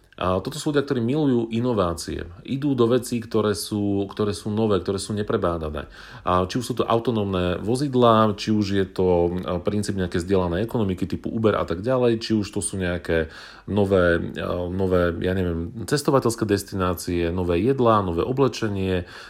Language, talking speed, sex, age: Slovak, 160 wpm, male, 40-59